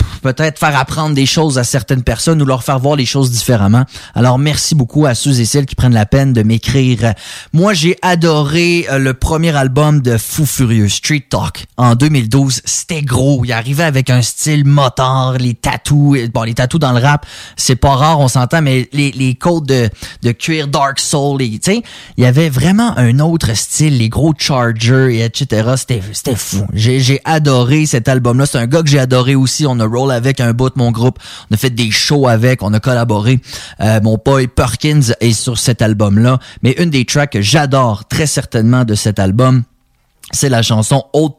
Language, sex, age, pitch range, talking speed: English, male, 20-39, 115-145 Hz, 205 wpm